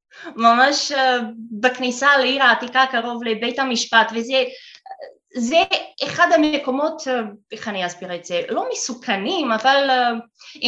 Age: 20-39